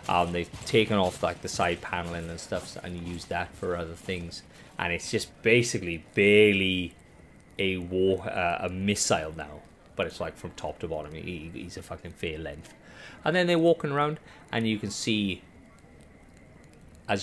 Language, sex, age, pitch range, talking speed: English, male, 30-49, 80-95 Hz, 175 wpm